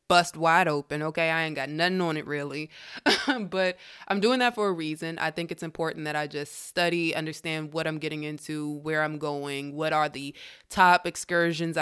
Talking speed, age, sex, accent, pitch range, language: 200 wpm, 20-39, female, American, 155-195 Hz, English